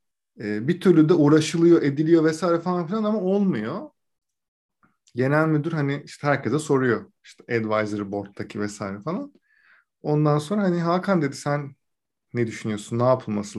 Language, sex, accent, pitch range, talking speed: Turkish, male, native, 125-175 Hz, 140 wpm